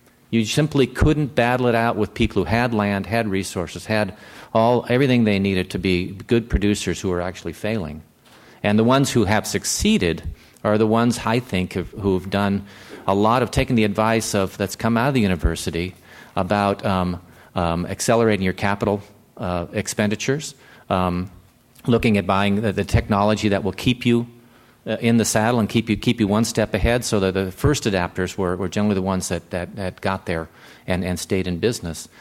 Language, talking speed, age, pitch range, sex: English, 195 wpm, 50-69, 95-115 Hz, male